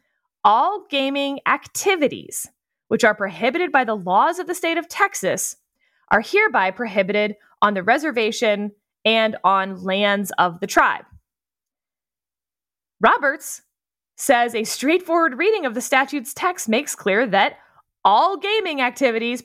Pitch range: 205-295 Hz